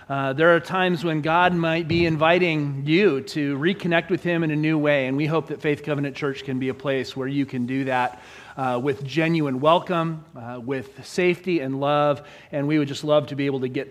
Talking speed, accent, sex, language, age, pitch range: 230 wpm, American, male, English, 40-59, 135-170 Hz